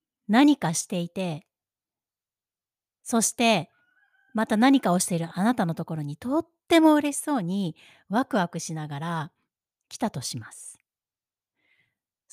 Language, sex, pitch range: Japanese, female, 165-235 Hz